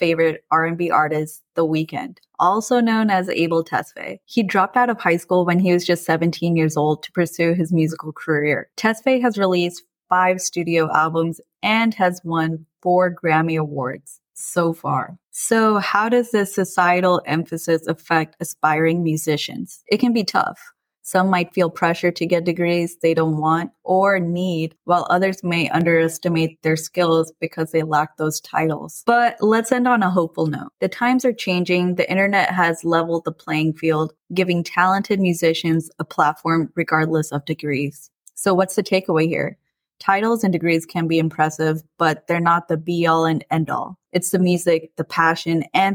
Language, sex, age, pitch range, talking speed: English, female, 20-39, 160-195 Hz, 165 wpm